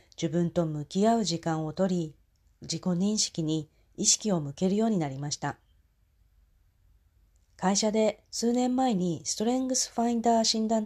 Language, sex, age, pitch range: Japanese, female, 40-59, 135-190 Hz